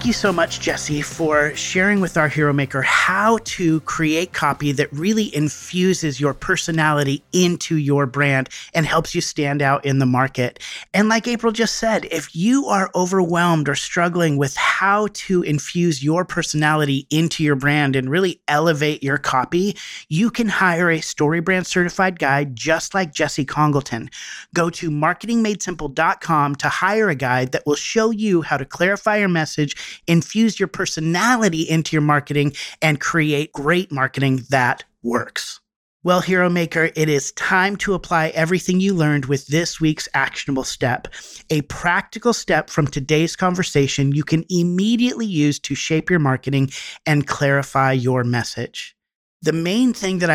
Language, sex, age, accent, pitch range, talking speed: English, male, 30-49, American, 145-180 Hz, 160 wpm